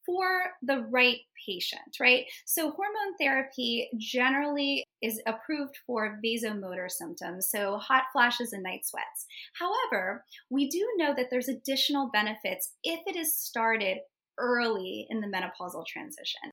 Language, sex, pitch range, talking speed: English, female, 210-275 Hz, 135 wpm